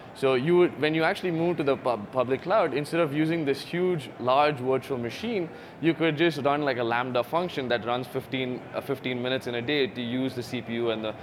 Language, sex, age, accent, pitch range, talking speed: English, male, 20-39, Indian, 105-130 Hz, 220 wpm